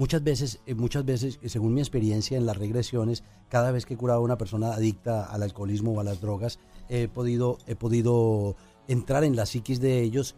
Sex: male